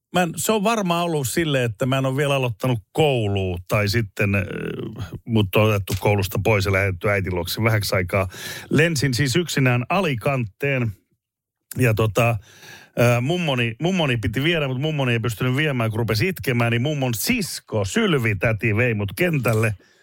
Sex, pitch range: male, 110-135 Hz